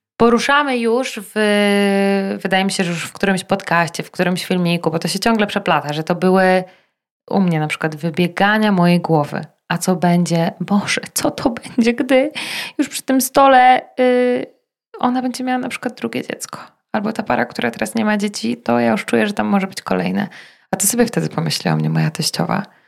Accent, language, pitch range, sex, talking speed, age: native, Polish, 160-215 Hz, female, 195 wpm, 20-39